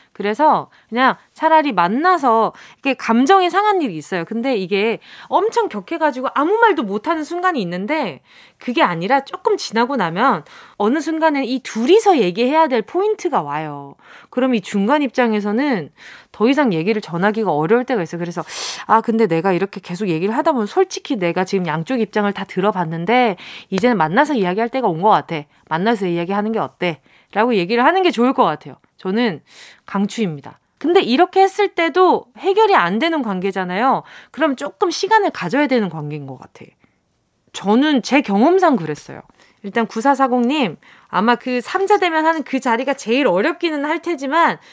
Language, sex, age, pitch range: Korean, female, 20-39, 200-300 Hz